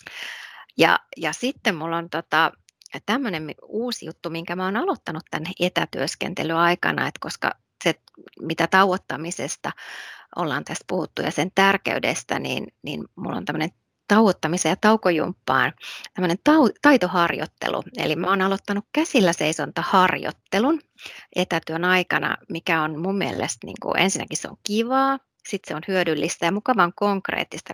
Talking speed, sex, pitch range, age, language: 130 wpm, female, 165-210 Hz, 30-49, Finnish